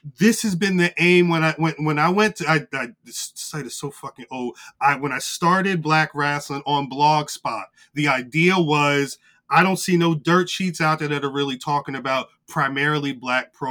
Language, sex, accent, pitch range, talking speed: English, male, American, 135-170 Hz, 205 wpm